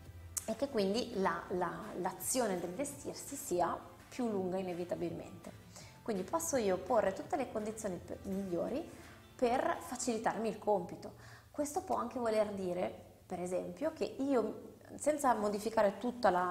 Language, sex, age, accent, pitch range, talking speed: Italian, female, 20-39, native, 185-240 Hz, 125 wpm